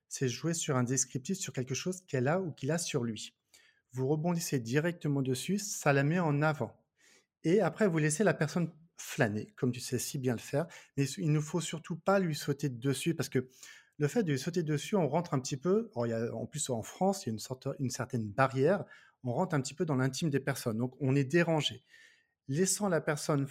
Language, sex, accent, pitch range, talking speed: French, male, French, 130-165 Hz, 230 wpm